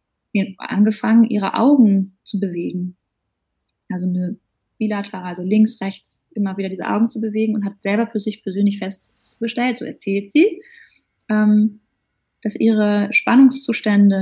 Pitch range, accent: 195-230 Hz, German